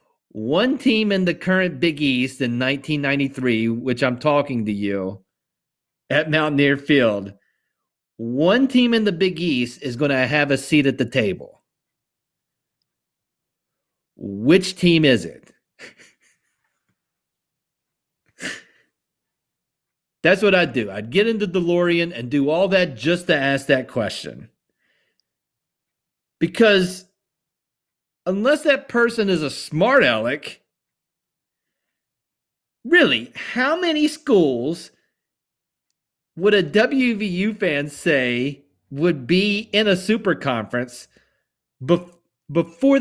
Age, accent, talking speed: 50-69, American, 110 wpm